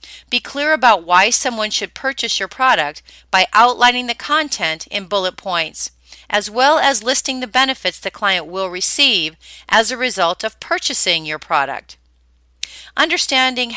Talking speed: 150 wpm